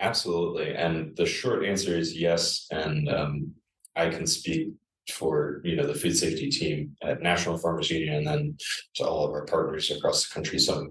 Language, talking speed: English, 185 wpm